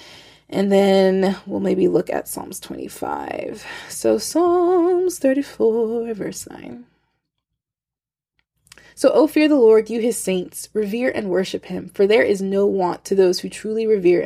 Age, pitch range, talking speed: 20-39, 190-290 Hz, 145 wpm